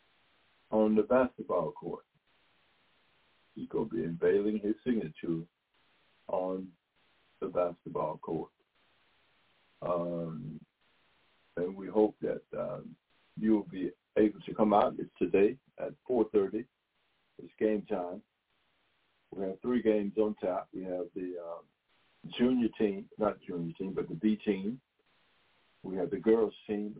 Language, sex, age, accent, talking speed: English, male, 60-79, American, 130 wpm